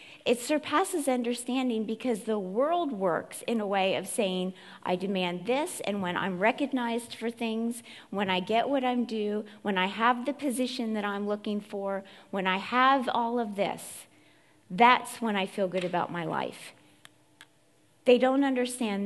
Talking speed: 170 wpm